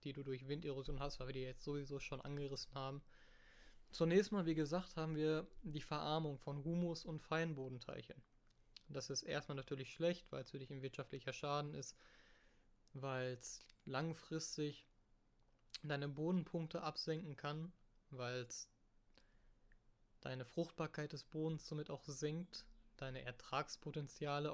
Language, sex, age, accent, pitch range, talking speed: German, male, 20-39, German, 130-160 Hz, 135 wpm